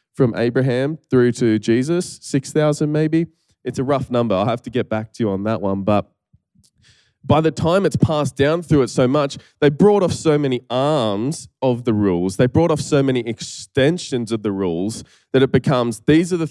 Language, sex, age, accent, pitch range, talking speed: English, male, 20-39, Australian, 115-145 Hz, 205 wpm